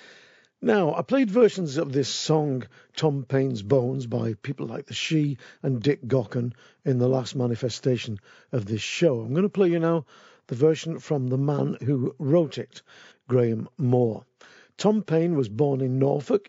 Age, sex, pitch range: 50-69, male, 125-160 Hz